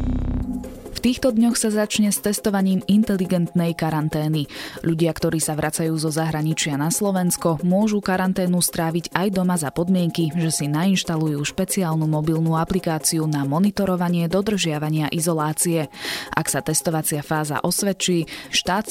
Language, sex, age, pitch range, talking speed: Slovak, female, 20-39, 155-185 Hz, 125 wpm